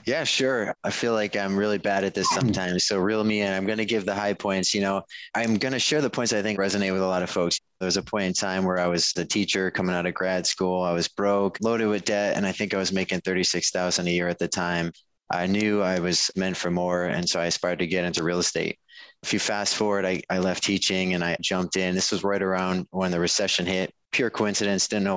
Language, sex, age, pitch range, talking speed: English, male, 20-39, 90-100 Hz, 270 wpm